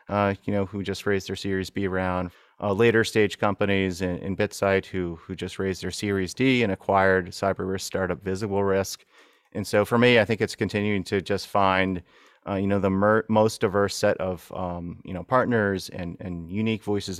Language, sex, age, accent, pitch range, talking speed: English, male, 30-49, American, 95-110 Hz, 205 wpm